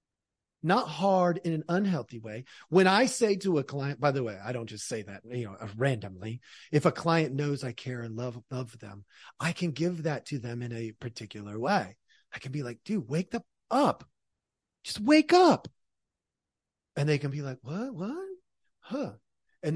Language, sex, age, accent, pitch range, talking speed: English, male, 40-59, American, 120-180 Hz, 190 wpm